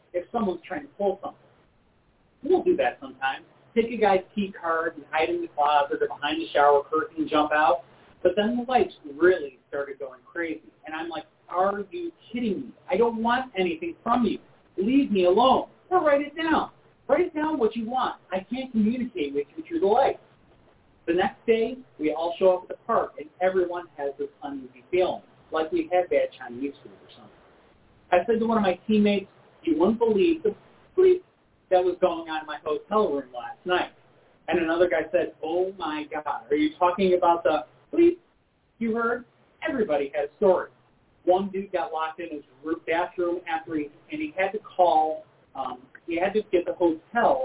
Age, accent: 30-49, American